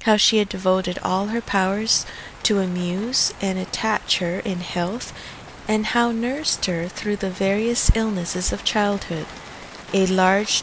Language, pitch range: English, 180-230 Hz